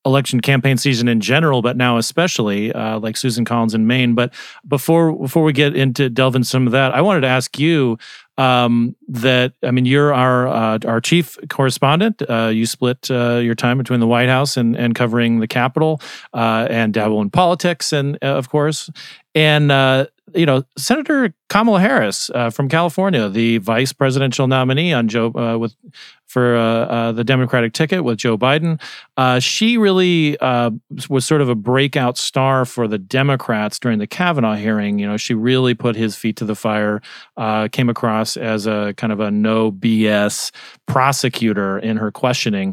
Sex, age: male, 40-59